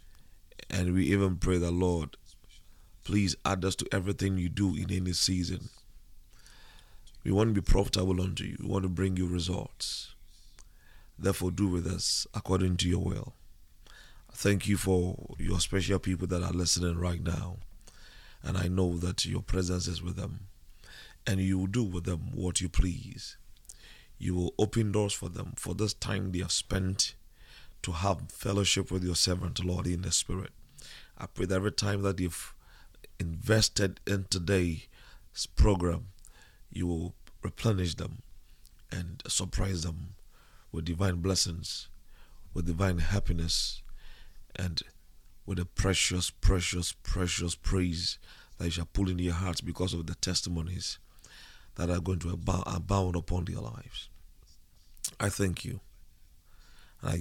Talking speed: 150 wpm